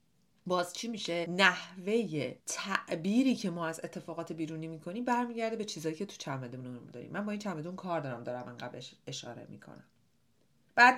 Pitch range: 155-200 Hz